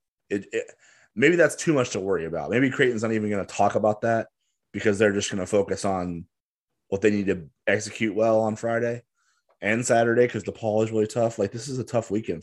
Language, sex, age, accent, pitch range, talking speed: English, male, 20-39, American, 95-110 Hz, 225 wpm